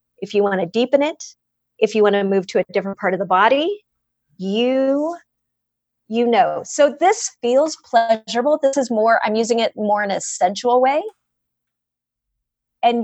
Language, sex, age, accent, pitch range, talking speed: English, female, 30-49, American, 210-275 Hz, 170 wpm